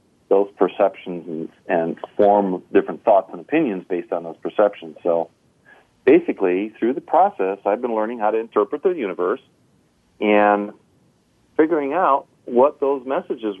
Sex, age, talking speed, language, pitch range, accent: male, 40-59, 140 wpm, English, 95-110 Hz, American